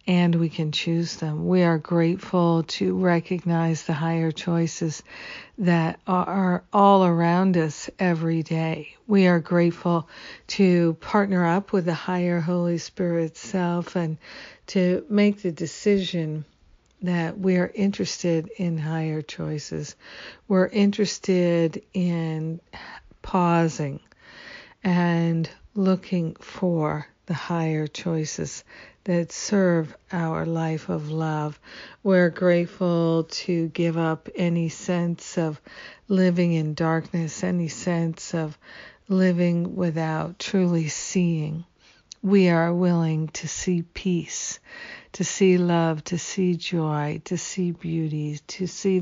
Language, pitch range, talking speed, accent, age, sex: English, 165-185 Hz, 115 wpm, American, 60-79, female